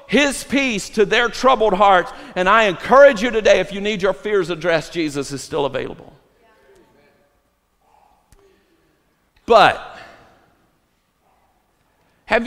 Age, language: 50-69, English